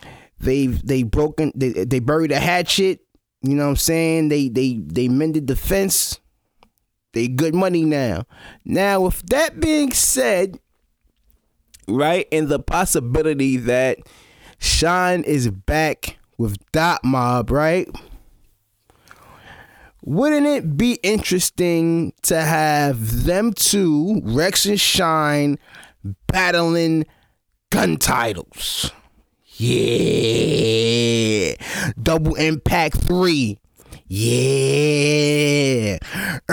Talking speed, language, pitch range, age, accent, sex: 95 wpm, English, 135-185 Hz, 20-39, American, male